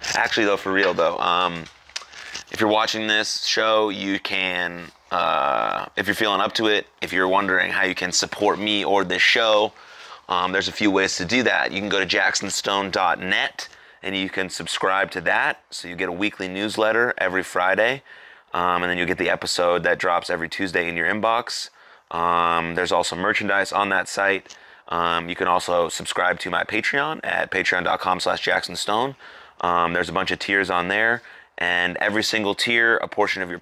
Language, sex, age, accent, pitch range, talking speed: English, male, 30-49, American, 90-105 Hz, 190 wpm